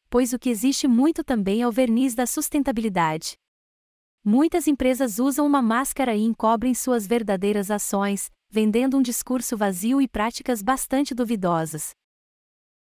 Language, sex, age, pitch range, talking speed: Portuguese, female, 20-39, 210-270 Hz, 135 wpm